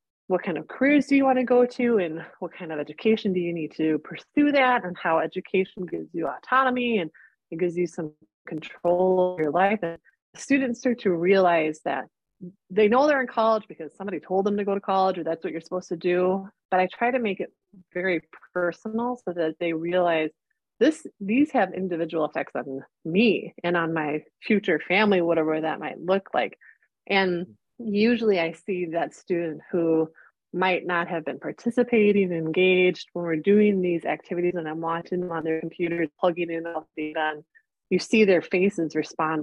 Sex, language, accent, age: female, English, American, 30-49